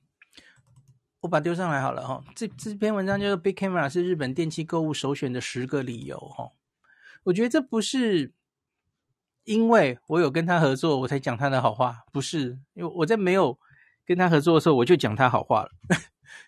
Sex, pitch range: male, 135-175 Hz